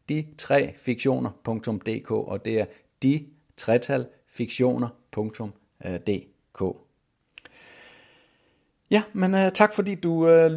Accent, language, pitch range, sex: native, Danish, 105-140 Hz, male